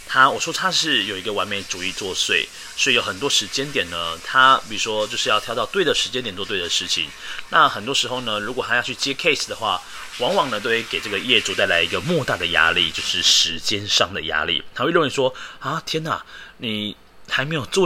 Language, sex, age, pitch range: Chinese, male, 30-49, 100-145 Hz